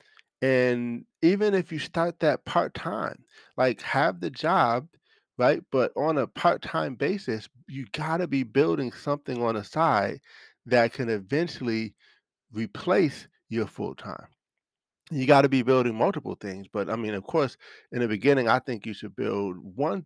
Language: English